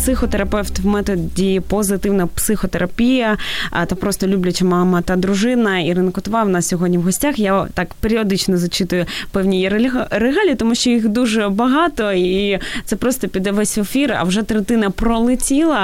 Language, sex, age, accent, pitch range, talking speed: Ukrainian, female, 20-39, native, 180-220 Hz, 150 wpm